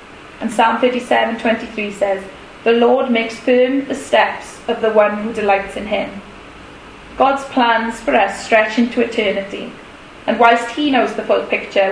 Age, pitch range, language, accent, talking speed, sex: 10-29, 215-255 Hz, English, British, 160 wpm, female